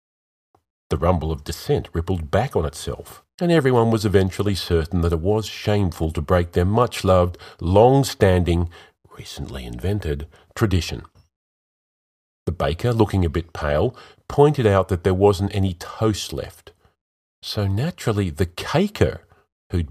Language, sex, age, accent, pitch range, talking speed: English, male, 40-59, Australian, 80-105 Hz, 135 wpm